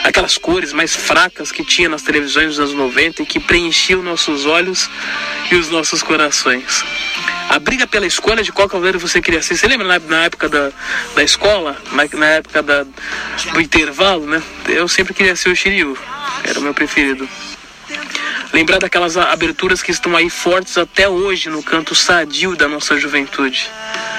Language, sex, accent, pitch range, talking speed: Portuguese, male, Brazilian, 160-200 Hz, 165 wpm